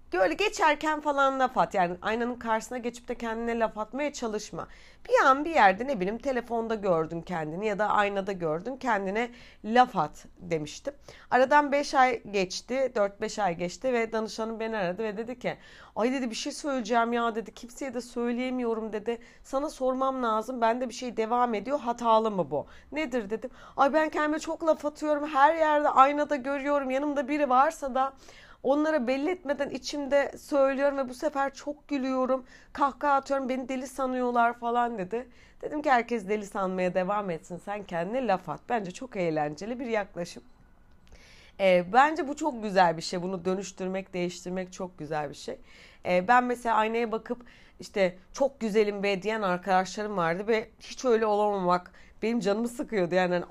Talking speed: 170 wpm